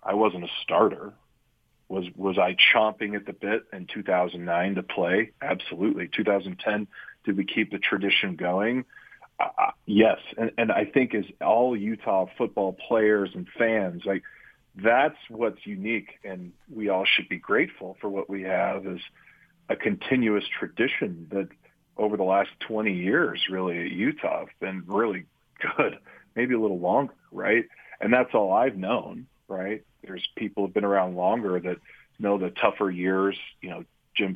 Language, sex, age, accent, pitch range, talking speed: English, male, 40-59, American, 95-105 Hz, 160 wpm